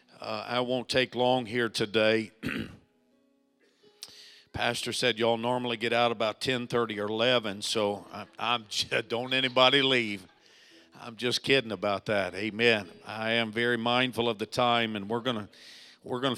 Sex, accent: male, American